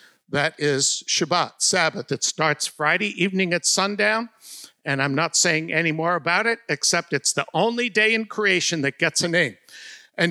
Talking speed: 175 wpm